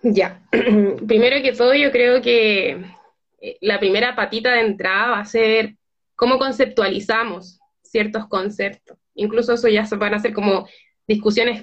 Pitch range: 220-260 Hz